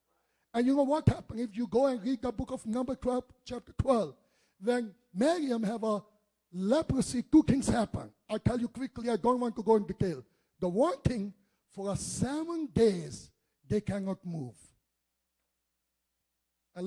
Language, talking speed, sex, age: English, 165 wpm, male, 60-79